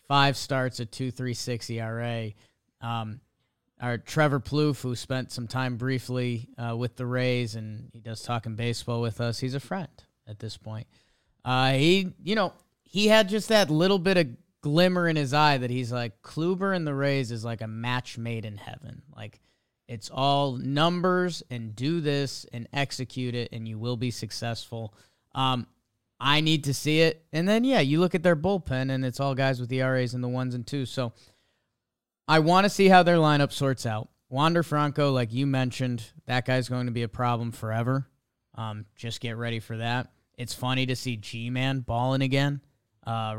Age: 20-39